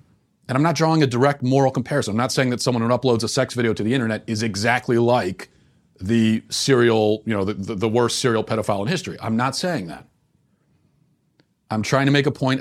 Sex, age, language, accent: male, 40-59, English, American